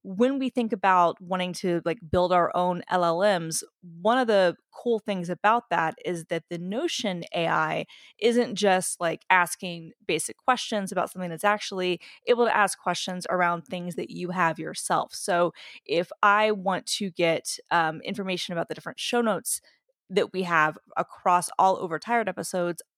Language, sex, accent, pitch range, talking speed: English, female, American, 175-215 Hz, 165 wpm